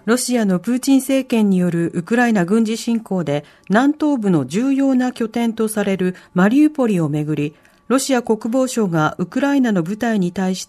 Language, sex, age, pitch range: Japanese, female, 40-59, 185-265 Hz